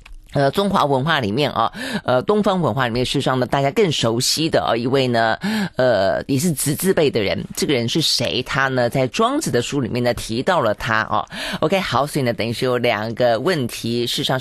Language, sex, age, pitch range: Chinese, female, 30-49, 120-165 Hz